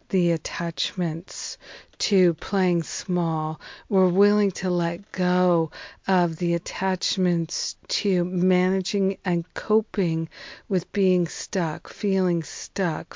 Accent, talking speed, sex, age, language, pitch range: American, 100 wpm, female, 50-69, English, 170-195 Hz